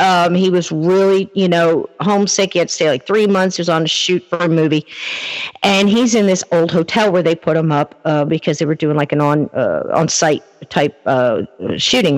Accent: American